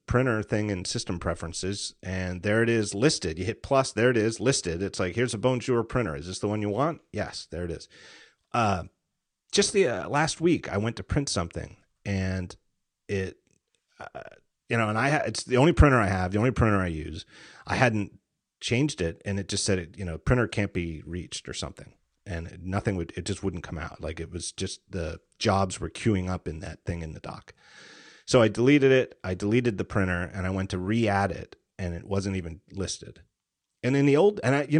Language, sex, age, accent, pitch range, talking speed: English, male, 30-49, American, 90-120 Hz, 220 wpm